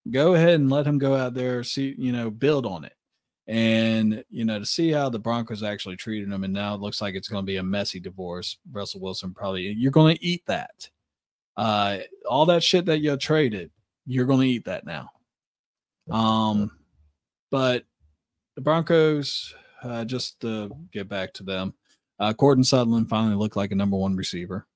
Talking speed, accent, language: 195 wpm, American, English